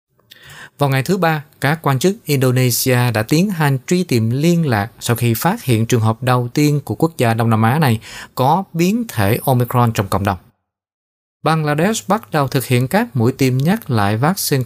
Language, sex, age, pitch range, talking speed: Vietnamese, male, 20-39, 115-150 Hz, 195 wpm